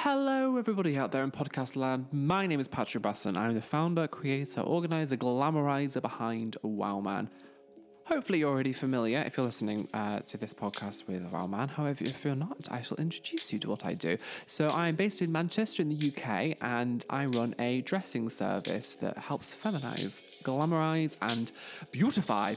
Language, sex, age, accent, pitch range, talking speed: English, male, 20-39, British, 115-170 Hz, 180 wpm